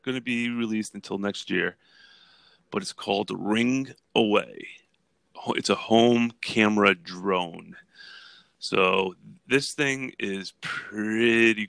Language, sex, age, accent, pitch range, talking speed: English, male, 30-49, American, 90-110 Hz, 115 wpm